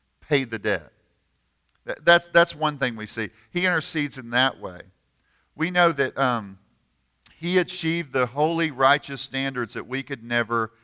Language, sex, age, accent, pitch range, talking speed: English, male, 50-69, American, 110-140 Hz, 155 wpm